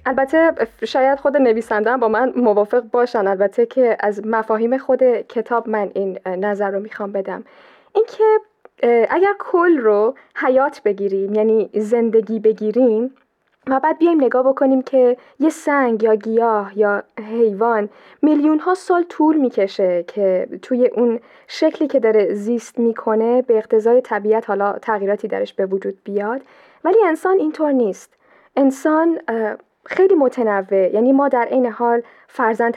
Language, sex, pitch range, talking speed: Persian, female, 220-270 Hz, 140 wpm